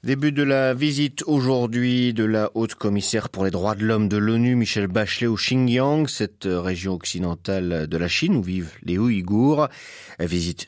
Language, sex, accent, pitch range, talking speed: French, male, French, 95-145 Hz, 175 wpm